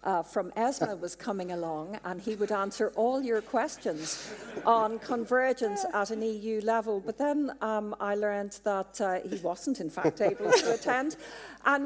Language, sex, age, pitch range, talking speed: English, female, 50-69, 185-230 Hz, 170 wpm